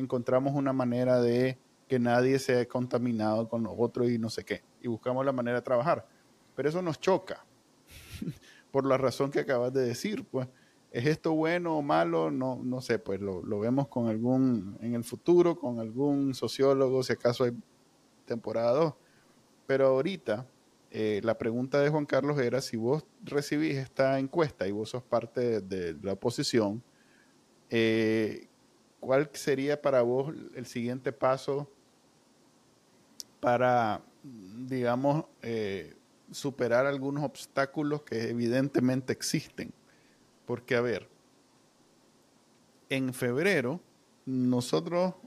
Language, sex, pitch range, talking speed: Spanish, male, 120-140 Hz, 135 wpm